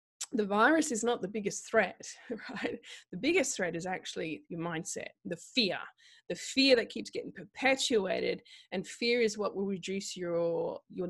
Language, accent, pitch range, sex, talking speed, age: English, Australian, 190-240 Hz, female, 170 wpm, 20-39